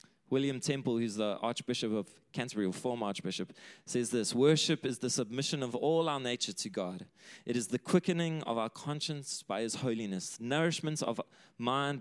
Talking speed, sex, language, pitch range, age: 175 wpm, male, English, 110-145 Hz, 20-39